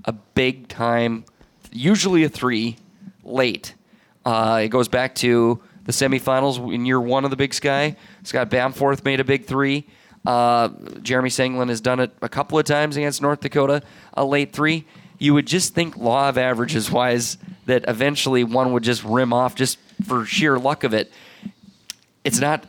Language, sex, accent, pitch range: English, male, American, 120-145 Hz